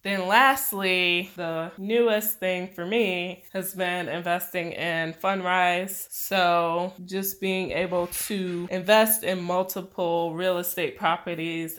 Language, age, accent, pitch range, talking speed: English, 20-39, American, 165-185 Hz, 115 wpm